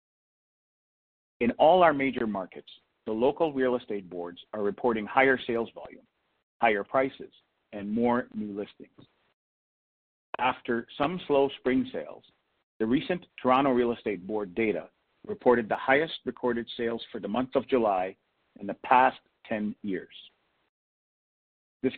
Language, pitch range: English, 110-135 Hz